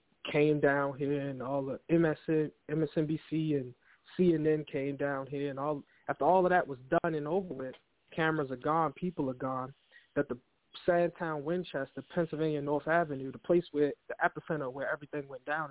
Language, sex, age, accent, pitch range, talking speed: English, male, 20-39, American, 135-165 Hz, 170 wpm